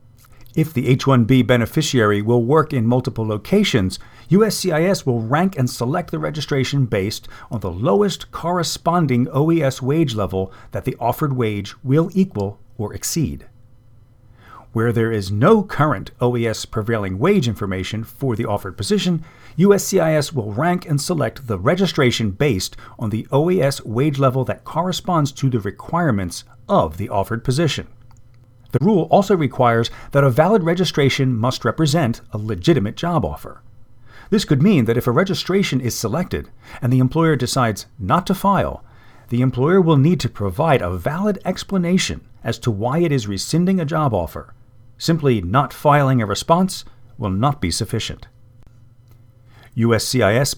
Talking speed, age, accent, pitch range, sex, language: 150 wpm, 40-59, American, 115-155 Hz, male, English